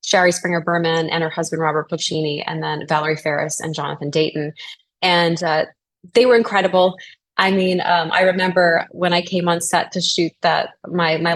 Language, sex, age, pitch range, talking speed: English, female, 20-39, 165-205 Hz, 180 wpm